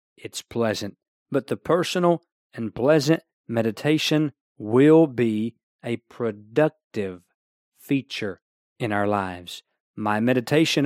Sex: male